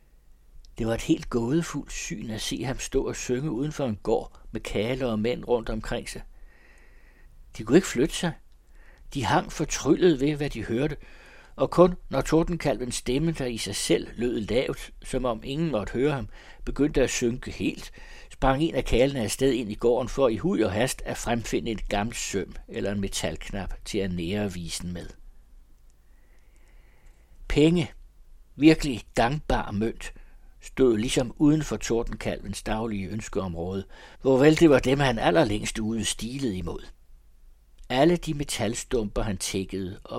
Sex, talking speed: male, 160 wpm